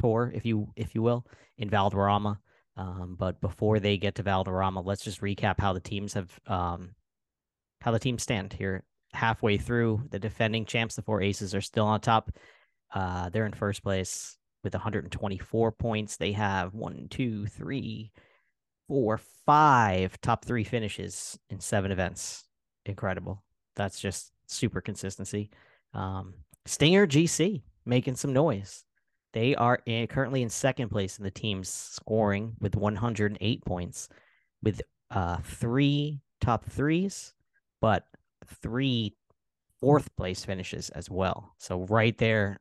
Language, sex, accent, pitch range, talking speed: English, male, American, 95-115 Hz, 140 wpm